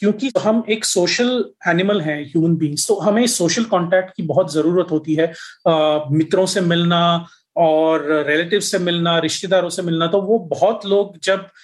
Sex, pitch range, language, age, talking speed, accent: male, 165-200 Hz, Hindi, 30-49, 170 wpm, native